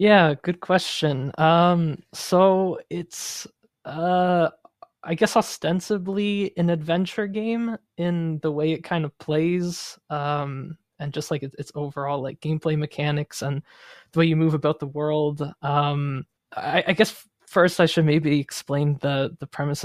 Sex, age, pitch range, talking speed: male, 20-39, 145-175 Hz, 150 wpm